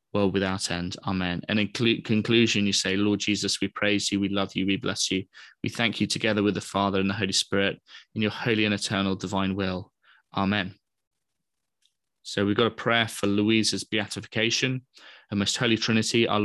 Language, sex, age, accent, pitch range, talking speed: English, male, 20-39, British, 100-115 Hz, 190 wpm